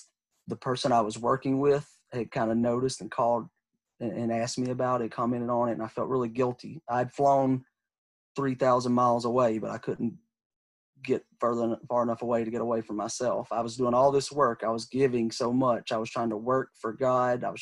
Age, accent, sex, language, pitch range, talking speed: 30-49, American, male, English, 115-125 Hz, 215 wpm